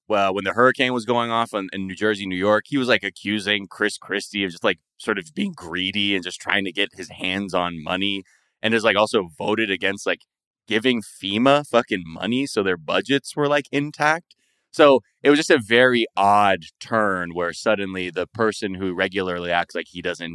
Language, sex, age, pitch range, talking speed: English, male, 20-39, 90-115 Hz, 205 wpm